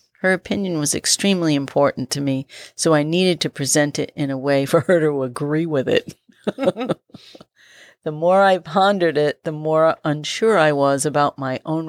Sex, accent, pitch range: female, American, 145-175 Hz